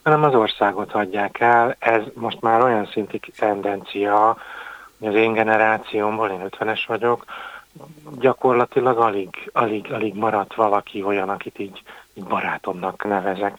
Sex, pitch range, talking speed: male, 105-120 Hz, 135 wpm